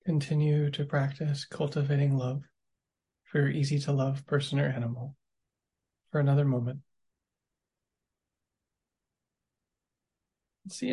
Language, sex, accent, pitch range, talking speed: English, male, American, 120-145 Hz, 95 wpm